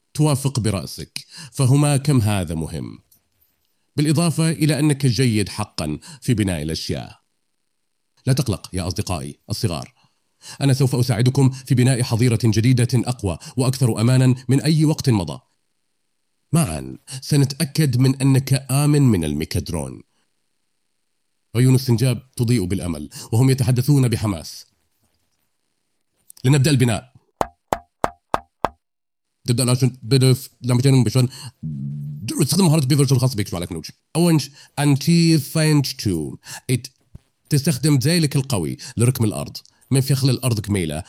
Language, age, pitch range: Arabic, 40-59, 105-140 Hz